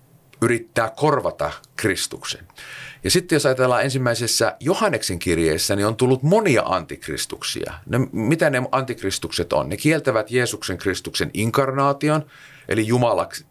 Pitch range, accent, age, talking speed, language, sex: 95-135 Hz, native, 30-49, 120 wpm, Finnish, male